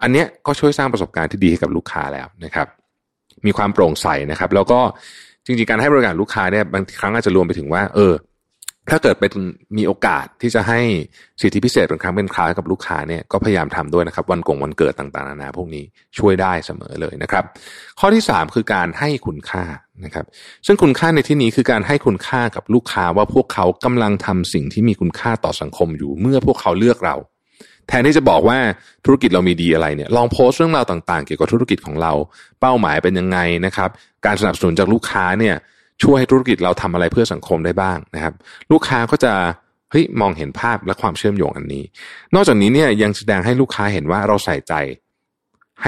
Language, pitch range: Thai, 85-115 Hz